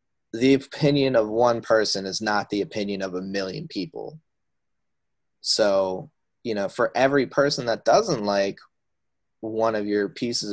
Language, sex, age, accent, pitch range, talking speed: English, male, 20-39, American, 100-130 Hz, 150 wpm